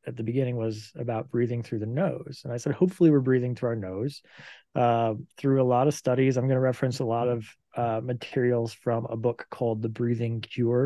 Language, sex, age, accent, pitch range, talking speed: English, male, 20-39, American, 110-135 Hz, 220 wpm